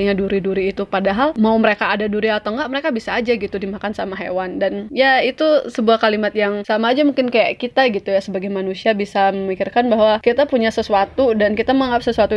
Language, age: Indonesian, 20-39